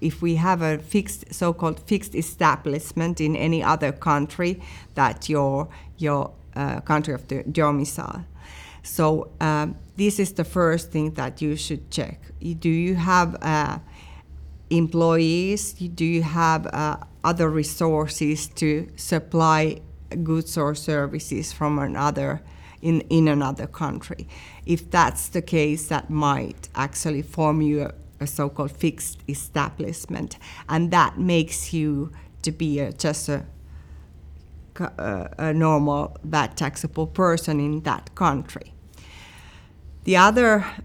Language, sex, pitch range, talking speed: English, female, 145-165 Hz, 125 wpm